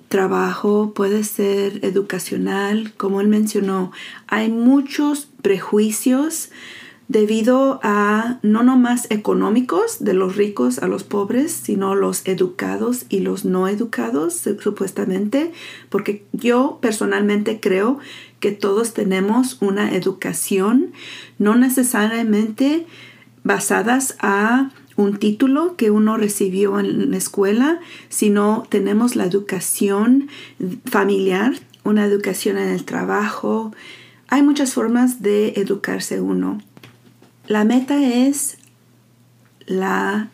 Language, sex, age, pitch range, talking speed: Spanish, female, 40-59, 200-240 Hz, 105 wpm